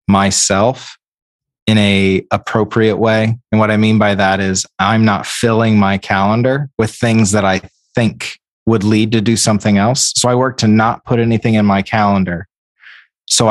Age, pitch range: 30-49, 100-110 Hz